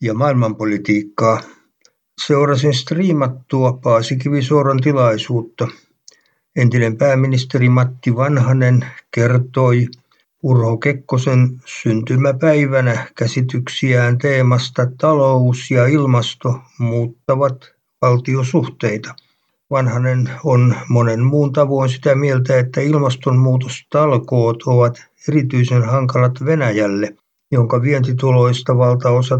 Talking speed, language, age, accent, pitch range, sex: 75 wpm, Finnish, 60-79, native, 120-135 Hz, male